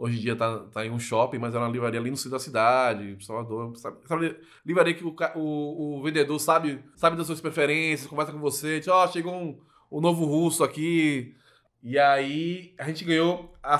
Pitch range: 115-155 Hz